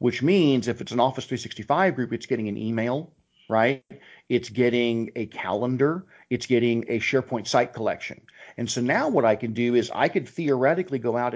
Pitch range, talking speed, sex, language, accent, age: 110-135 Hz, 190 wpm, male, English, American, 50-69